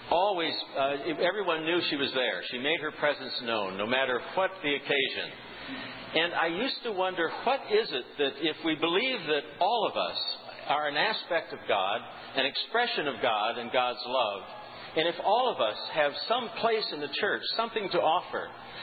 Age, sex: 60-79, male